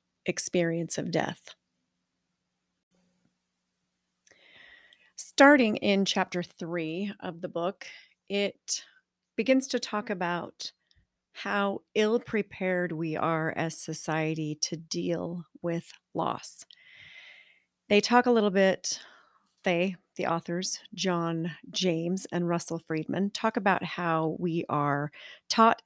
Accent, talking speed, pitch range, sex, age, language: American, 100 wpm, 165-205 Hz, female, 30-49, English